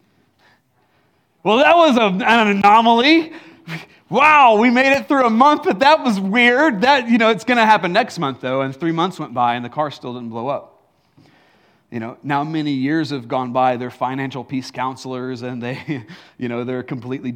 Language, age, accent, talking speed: English, 40-59, American, 195 wpm